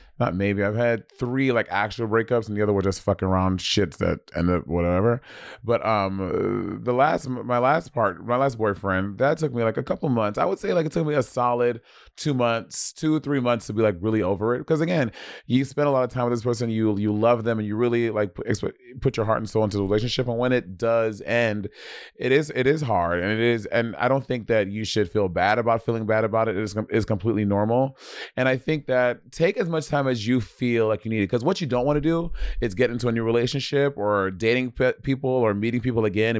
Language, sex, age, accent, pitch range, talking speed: English, male, 30-49, American, 105-125 Hz, 245 wpm